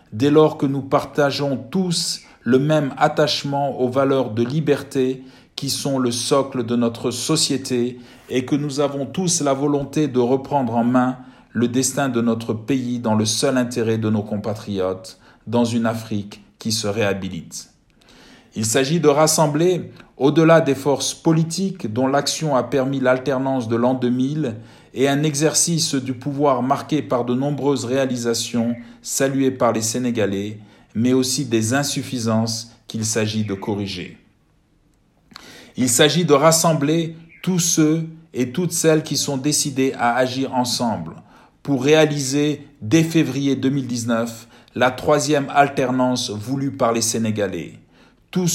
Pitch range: 120-145 Hz